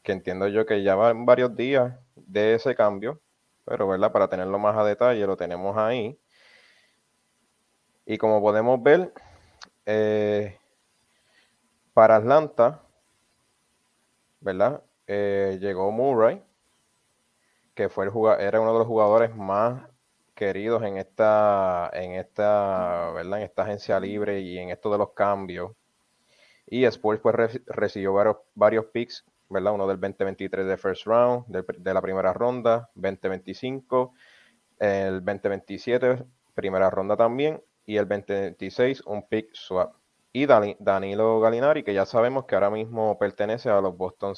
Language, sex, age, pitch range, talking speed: Spanish, male, 20-39, 95-115 Hz, 140 wpm